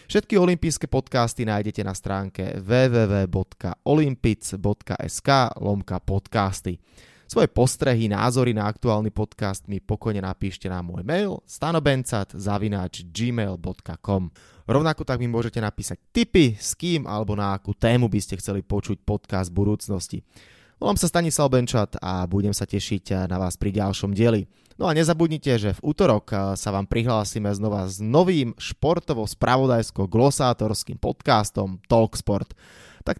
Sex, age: male, 20-39